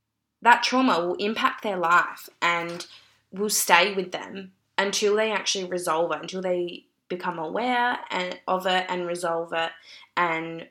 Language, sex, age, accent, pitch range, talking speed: English, female, 20-39, Australian, 165-185 Hz, 145 wpm